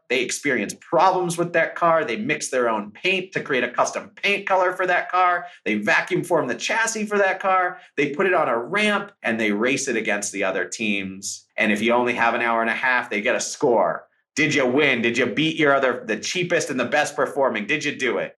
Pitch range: 115-165 Hz